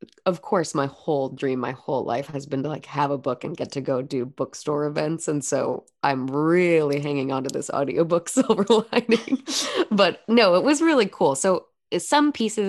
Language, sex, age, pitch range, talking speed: English, female, 20-39, 140-170 Hz, 200 wpm